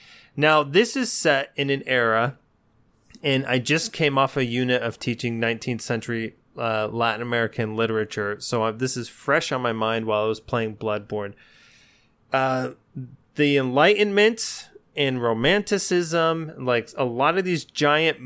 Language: English